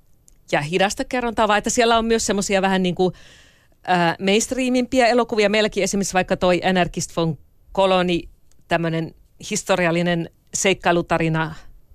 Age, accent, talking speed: 40-59, native, 120 wpm